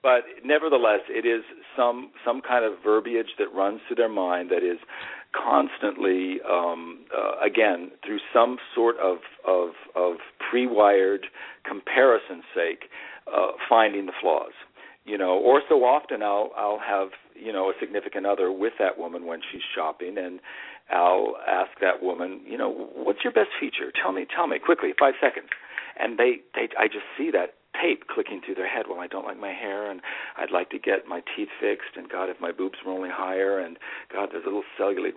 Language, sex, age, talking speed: English, male, 50-69, 190 wpm